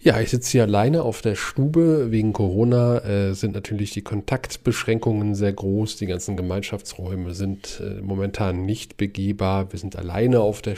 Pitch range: 100-120 Hz